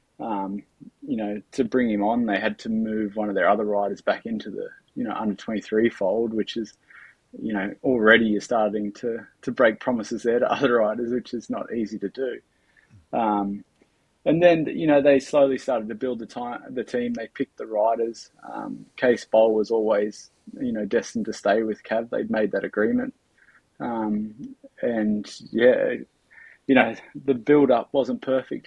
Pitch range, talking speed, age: 110-130 Hz, 190 wpm, 20-39